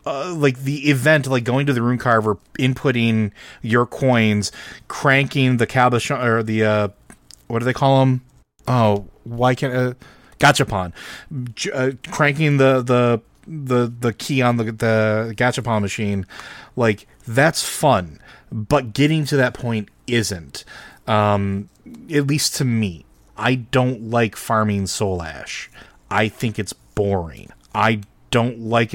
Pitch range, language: 105-130 Hz, English